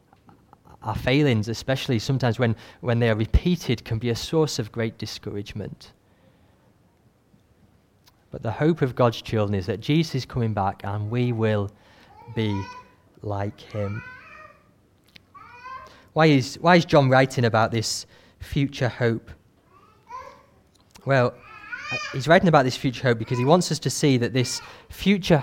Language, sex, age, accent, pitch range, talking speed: English, male, 30-49, British, 110-145 Hz, 140 wpm